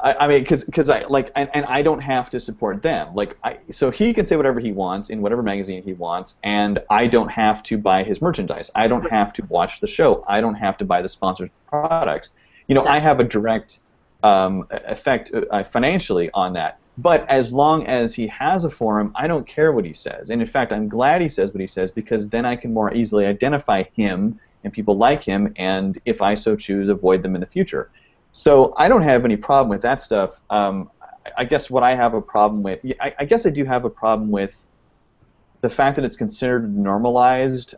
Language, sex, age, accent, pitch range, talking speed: English, male, 30-49, American, 105-130 Hz, 220 wpm